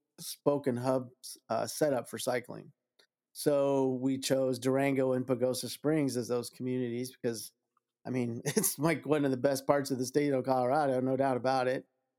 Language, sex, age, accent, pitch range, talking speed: English, male, 40-59, American, 130-140 Hz, 175 wpm